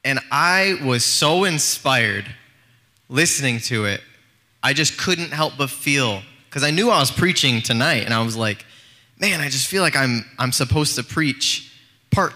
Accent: American